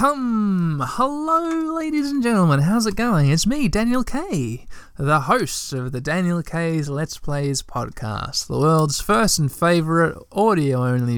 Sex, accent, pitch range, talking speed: male, Australian, 130-195 Hz, 140 wpm